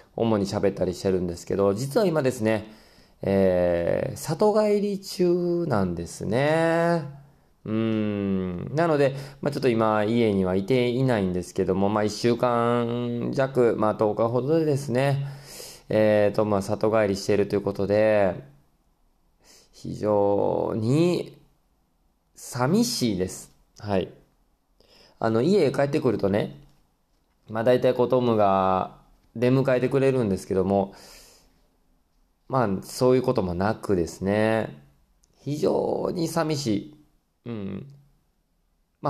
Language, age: Japanese, 20-39